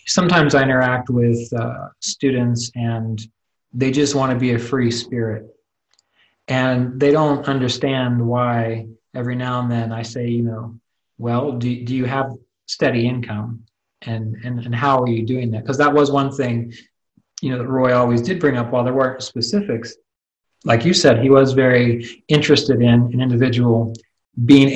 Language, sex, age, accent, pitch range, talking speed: English, male, 30-49, American, 115-135 Hz, 170 wpm